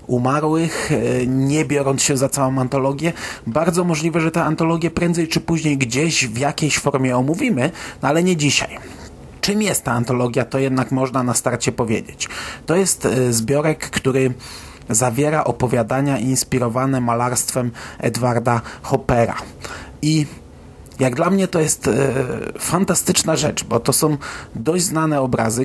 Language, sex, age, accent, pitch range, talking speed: Polish, male, 30-49, native, 125-150 Hz, 135 wpm